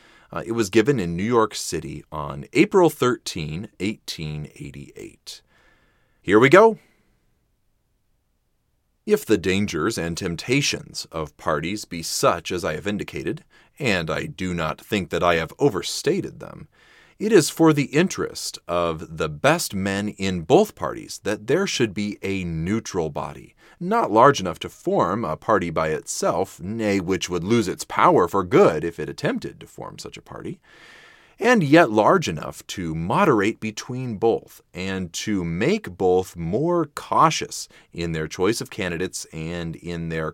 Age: 30-49